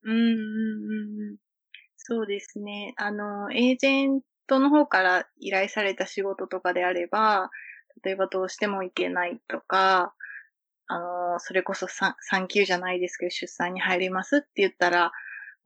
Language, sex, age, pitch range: Japanese, female, 20-39, 185-215 Hz